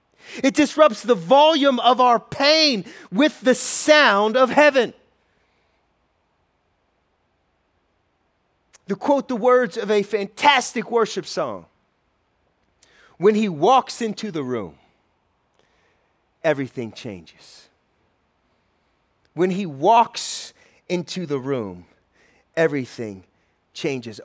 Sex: male